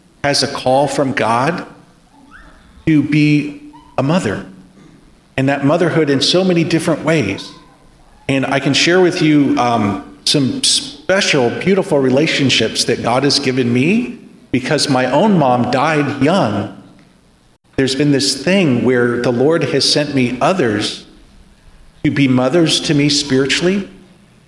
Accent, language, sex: American, English, male